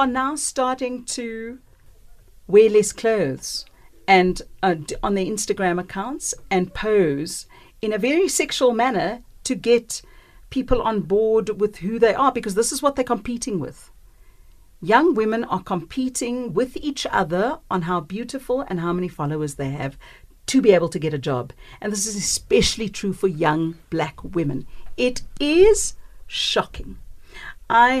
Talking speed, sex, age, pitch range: 150 wpm, female, 50-69, 175-245 Hz